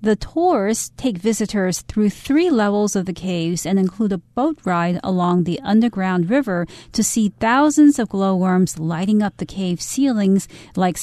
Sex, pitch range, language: female, 180-225 Hz, Chinese